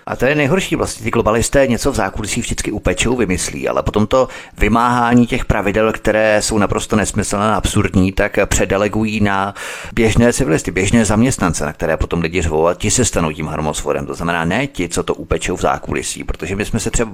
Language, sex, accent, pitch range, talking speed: Czech, male, native, 90-110 Hz, 200 wpm